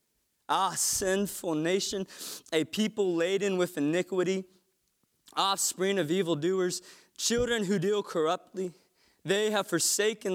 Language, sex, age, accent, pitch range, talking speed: English, male, 20-39, American, 170-210 Hz, 105 wpm